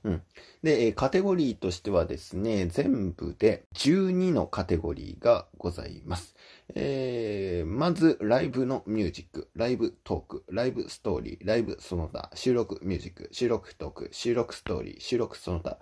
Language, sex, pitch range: Japanese, male, 85-120 Hz